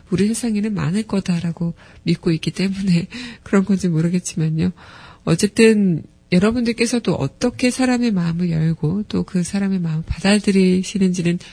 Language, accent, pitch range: Korean, native, 170-205 Hz